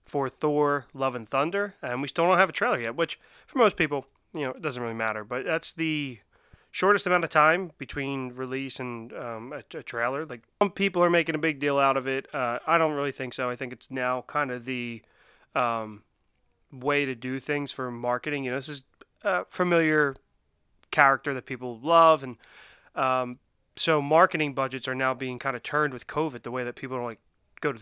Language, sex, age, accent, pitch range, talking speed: English, male, 30-49, American, 125-150 Hz, 215 wpm